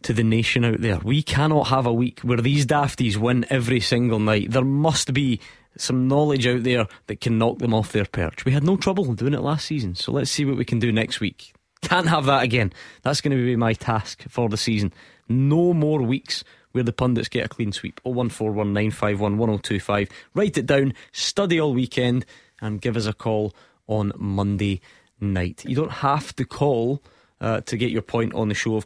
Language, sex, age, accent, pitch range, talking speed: English, male, 20-39, British, 110-130 Hz, 210 wpm